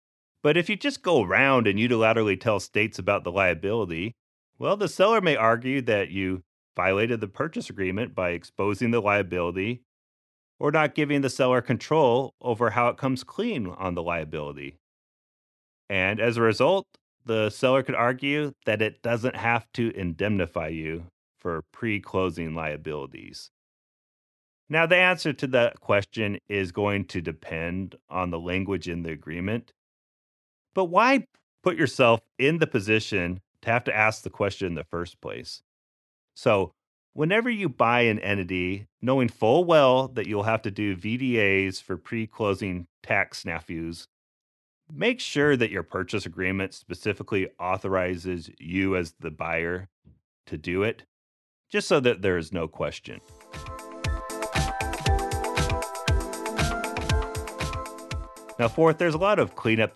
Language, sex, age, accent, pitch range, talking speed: English, male, 30-49, American, 90-125 Hz, 140 wpm